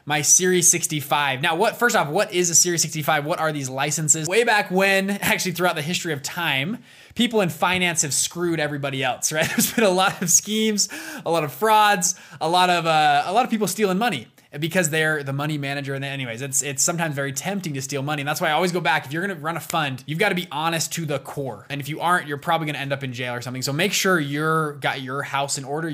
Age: 20-39